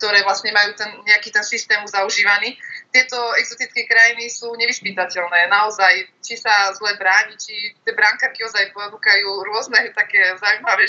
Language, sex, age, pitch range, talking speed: Slovak, female, 20-39, 205-235 Hz, 130 wpm